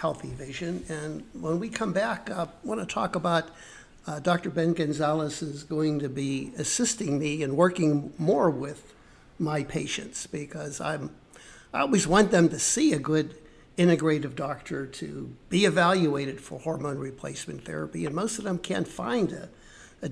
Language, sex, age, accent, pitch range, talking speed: English, male, 60-79, American, 145-175 Hz, 160 wpm